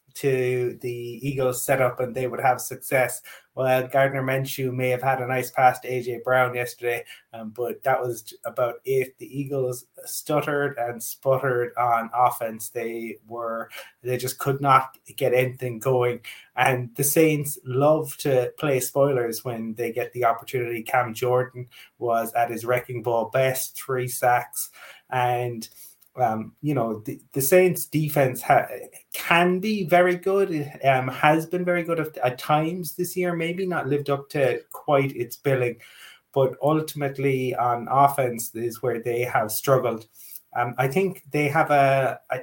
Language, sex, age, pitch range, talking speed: English, male, 20-39, 120-145 Hz, 160 wpm